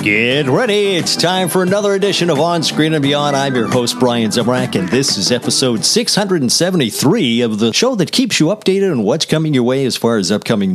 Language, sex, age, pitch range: English, male, 50-69, 120-185 Hz